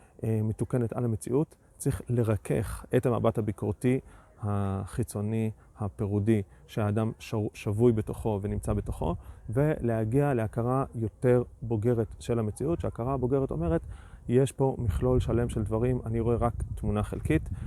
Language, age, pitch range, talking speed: Hebrew, 30-49, 105-125 Hz, 120 wpm